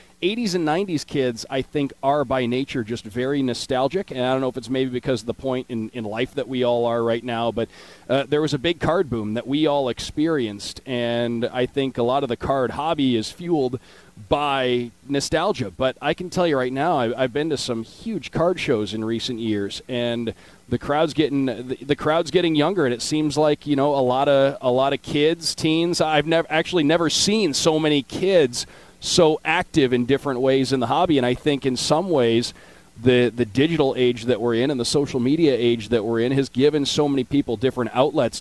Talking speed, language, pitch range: 220 wpm, English, 120-145 Hz